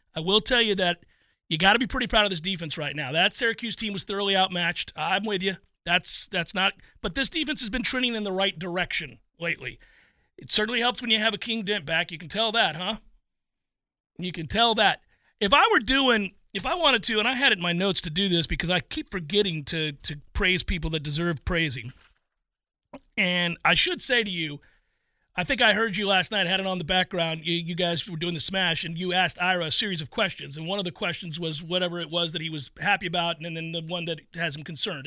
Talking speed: 250 wpm